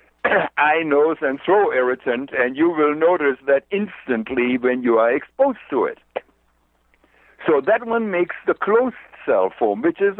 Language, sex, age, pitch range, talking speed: English, male, 60-79, 130-220 Hz, 160 wpm